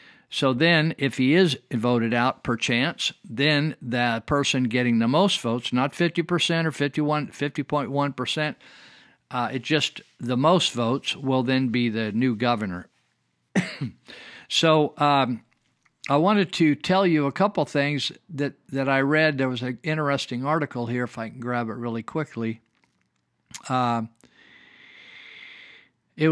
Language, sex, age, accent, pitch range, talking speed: English, male, 50-69, American, 125-155 Hz, 145 wpm